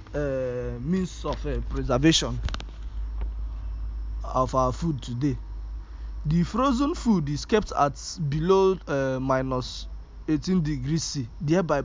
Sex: male